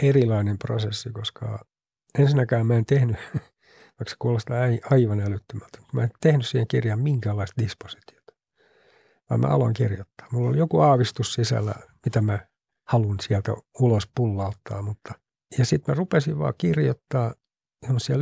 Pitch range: 110-135 Hz